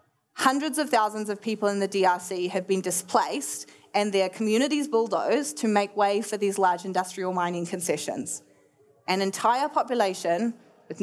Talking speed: 150 wpm